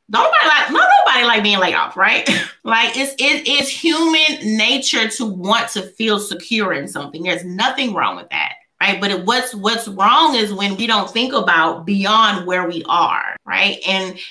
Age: 30-49